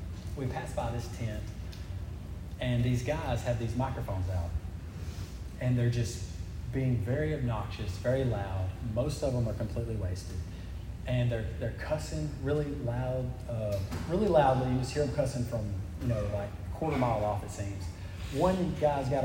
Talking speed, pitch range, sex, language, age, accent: 165 wpm, 90-125 Hz, male, English, 30-49, American